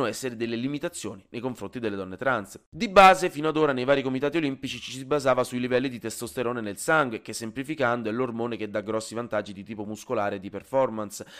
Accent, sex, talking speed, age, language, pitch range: native, male, 210 wpm, 30-49, Italian, 110-150 Hz